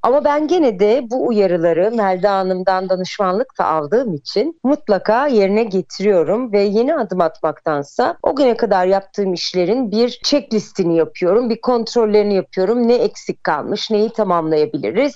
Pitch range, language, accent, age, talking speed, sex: 190-240 Hz, Turkish, native, 40-59, 140 wpm, female